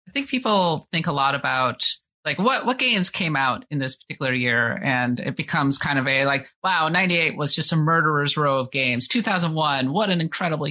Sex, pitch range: male, 130-175 Hz